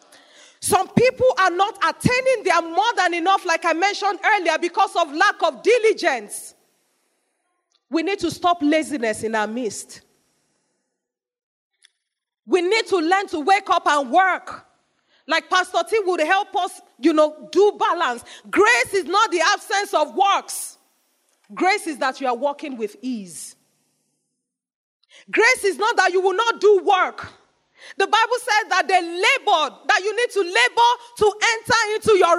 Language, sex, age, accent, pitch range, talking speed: English, female, 40-59, Nigerian, 320-415 Hz, 155 wpm